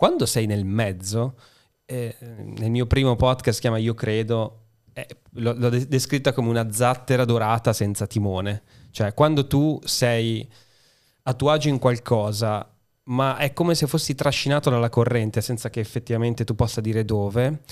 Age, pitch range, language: 20-39, 115-145 Hz, Italian